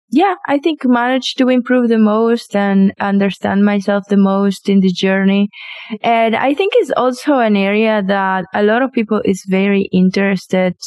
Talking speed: 170 wpm